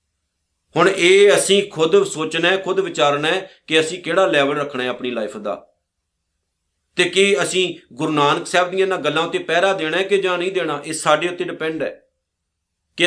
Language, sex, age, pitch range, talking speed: Punjabi, male, 50-69, 155-195 Hz, 190 wpm